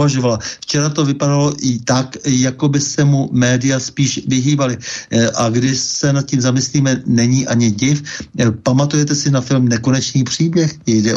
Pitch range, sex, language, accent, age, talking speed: 110-130 Hz, male, Czech, native, 60-79, 155 wpm